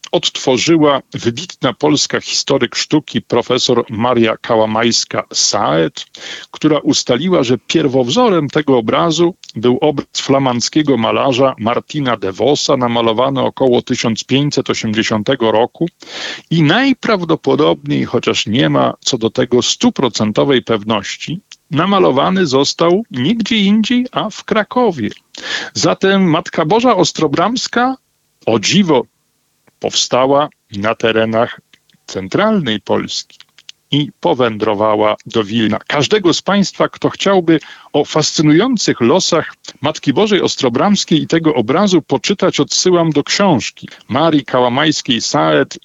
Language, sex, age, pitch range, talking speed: Polish, male, 50-69, 120-170 Hz, 100 wpm